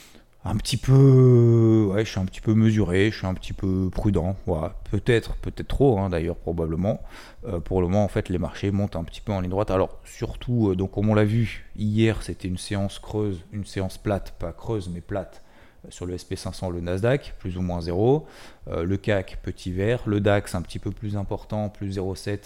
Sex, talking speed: male, 215 wpm